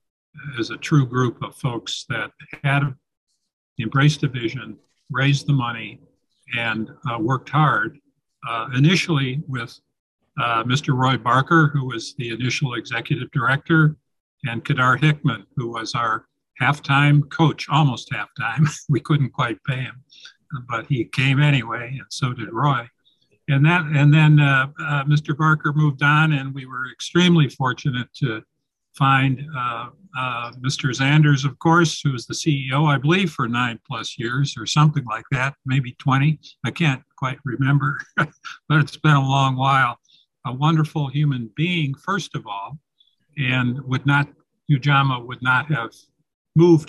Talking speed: 150 wpm